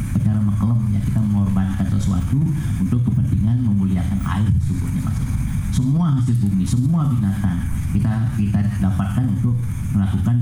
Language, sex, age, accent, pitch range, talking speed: Indonesian, male, 50-69, native, 100-125 Hz, 120 wpm